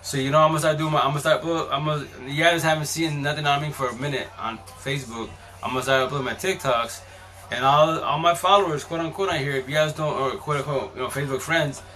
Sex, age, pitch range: male, 20-39, 115-155 Hz